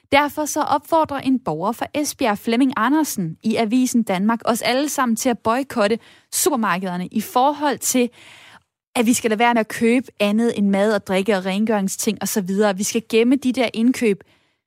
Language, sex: Danish, female